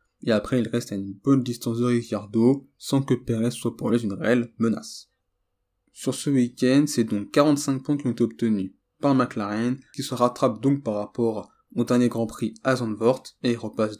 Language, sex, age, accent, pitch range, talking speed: French, male, 20-39, French, 110-135 Hz, 195 wpm